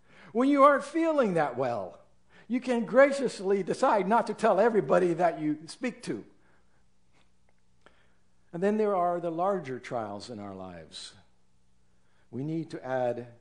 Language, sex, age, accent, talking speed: English, male, 60-79, American, 145 wpm